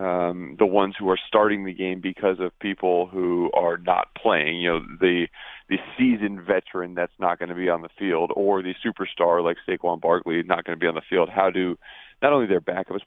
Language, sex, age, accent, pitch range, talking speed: English, male, 30-49, American, 90-100 Hz, 220 wpm